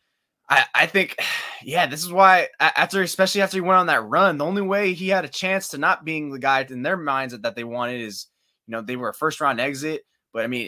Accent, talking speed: American, 255 wpm